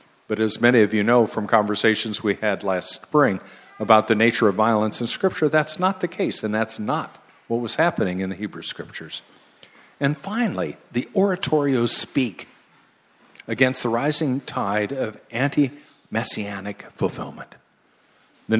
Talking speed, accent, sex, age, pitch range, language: 150 wpm, American, male, 50-69, 105-145 Hz, English